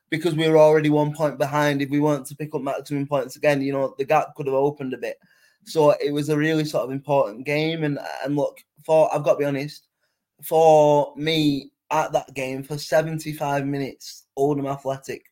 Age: 20-39